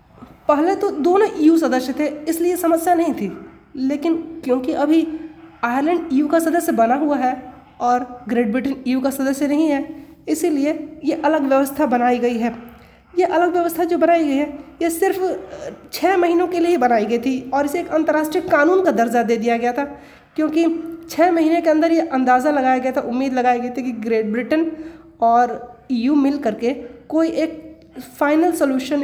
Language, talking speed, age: Hindi, 185 wpm, 20-39